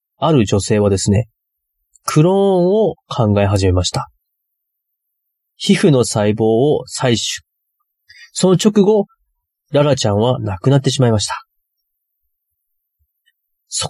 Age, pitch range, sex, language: 30-49, 105-155 Hz, male, Japanese